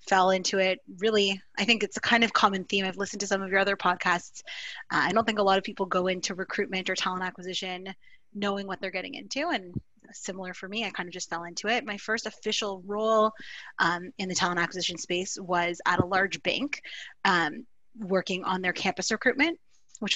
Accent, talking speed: American, 215 wpm